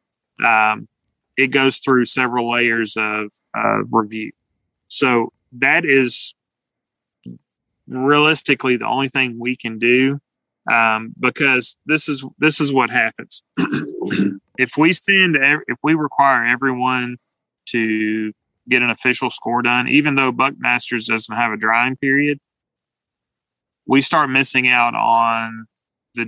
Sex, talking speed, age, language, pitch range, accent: male, 120 wpm, 30-49, English, 115-135 Hz, American